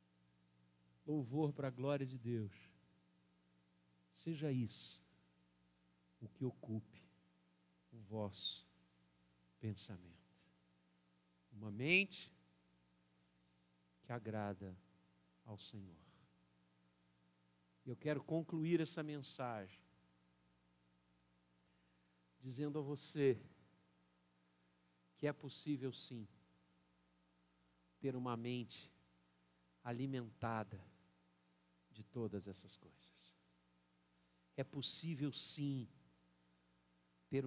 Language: Portuguese